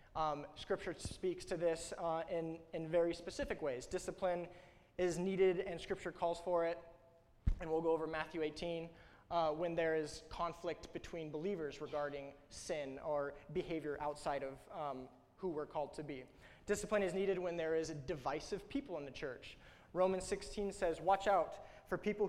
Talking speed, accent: 170 wpm, American